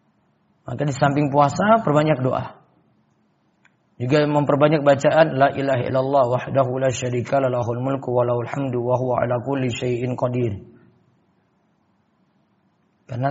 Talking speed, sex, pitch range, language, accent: 95 wpm, male, 135-180 Hz, Indonesian, native